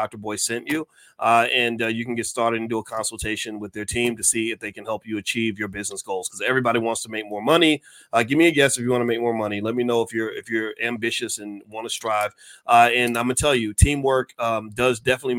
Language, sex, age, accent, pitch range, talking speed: English, male, 30-49, American, 110-125 Hz, 275 wpm